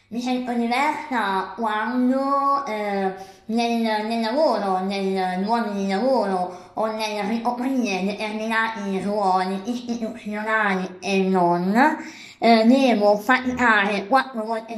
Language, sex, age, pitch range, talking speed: Italian, male, 20-39, 195-245 Hz, 100 wpm